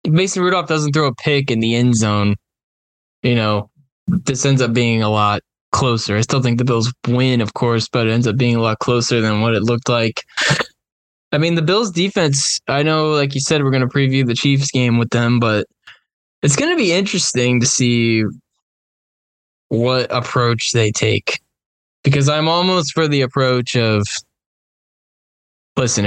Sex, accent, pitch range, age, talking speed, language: male, American, 110-145 Hz, 10-29, 175 wpm, English